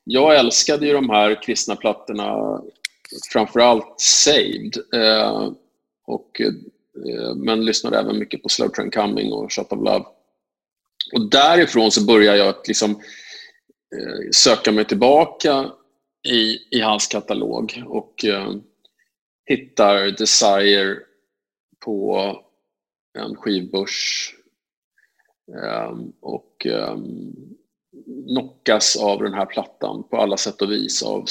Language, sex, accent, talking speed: Swedish, male, Norwegian, 115 wpm